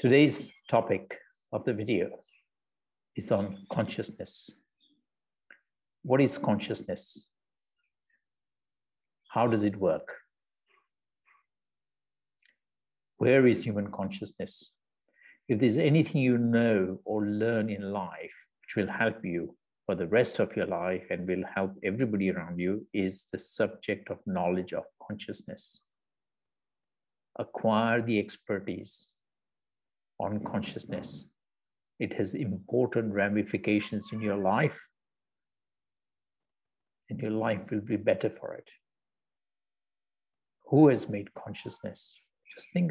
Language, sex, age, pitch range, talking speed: English, male, 60-79, 100-120 Hz, 110 wpm